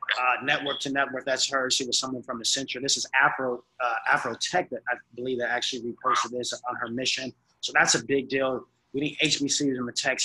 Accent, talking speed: American, 210 wpm